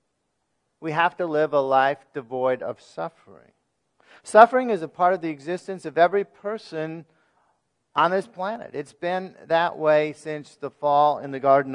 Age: 50-69